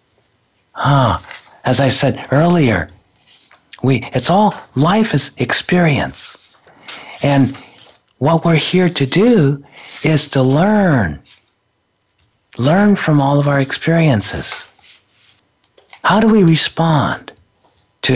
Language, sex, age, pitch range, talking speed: English, male, 50-69, 120-165 Hz, 105 wpm